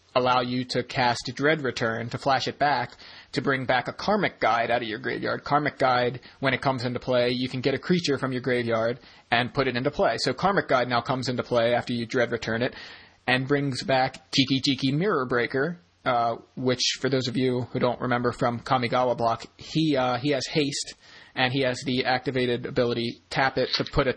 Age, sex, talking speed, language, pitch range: 30-49, male, 215 wpm, English, 120-145 Hz